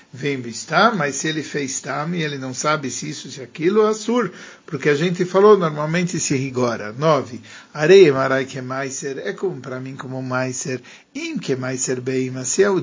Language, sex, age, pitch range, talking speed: English, male, 50-69, 130-175 Hz, 205 wpm